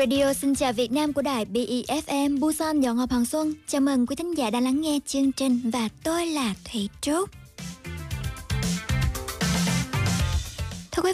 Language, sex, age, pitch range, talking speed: Vietnamese, male, 20-39, 235-295 Hz, 155 wpm